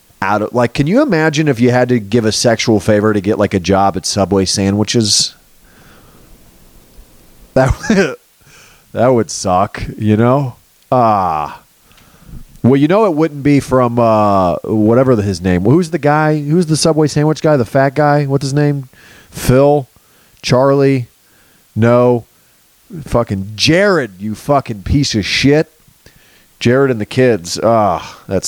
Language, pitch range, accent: English, 100-135 Hz, American